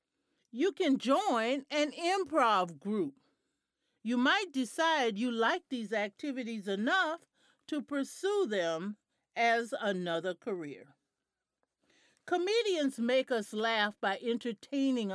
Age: 50-69